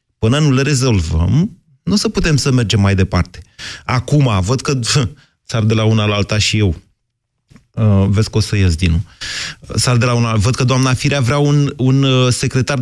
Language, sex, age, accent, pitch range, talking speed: Romanian, male, 30-49, native, 115-175 Hz, 190 wpm